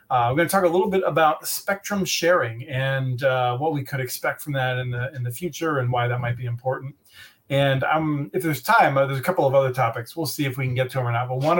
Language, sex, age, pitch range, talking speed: English, male, 40-59, 125-160 Hz, 280 wpm